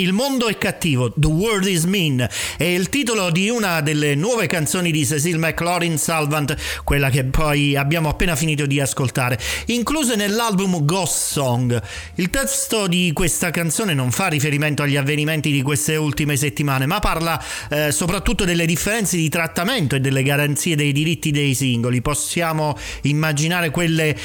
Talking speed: 160 wpm